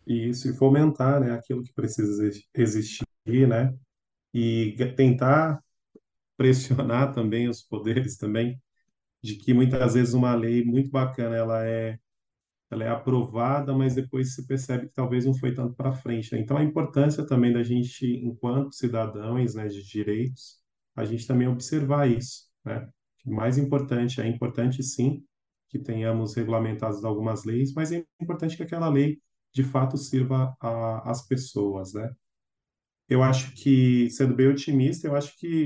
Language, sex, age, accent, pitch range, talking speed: Portuguese, male, 20-39, Brazilian, 115-135 Hz, 155 wpm